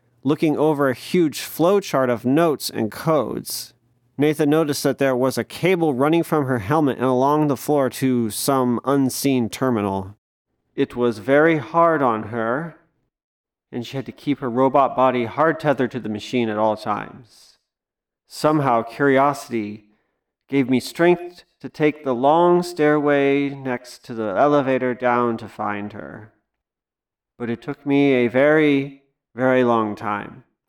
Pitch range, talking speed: 115-145 Hz, 150 wpm